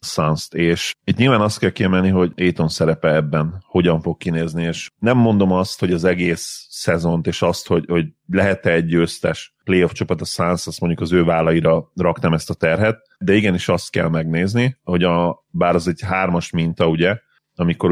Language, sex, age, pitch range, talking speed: Hungarian, male, 30-49, 80-95 Hz, 190 wpm